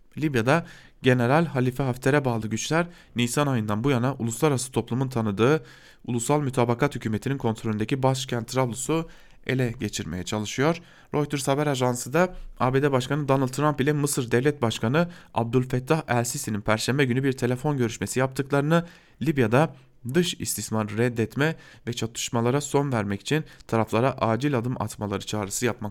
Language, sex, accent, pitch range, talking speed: German, male, Turkish, 115-145 Hz, 130 wpm